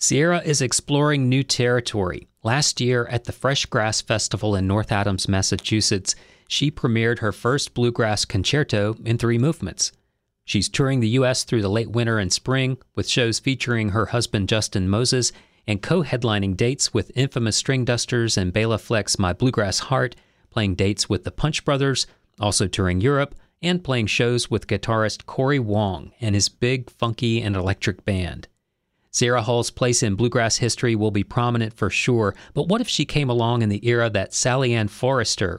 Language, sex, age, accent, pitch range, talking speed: English, male, 40-59, American, 105-130 Hz, 170 wpm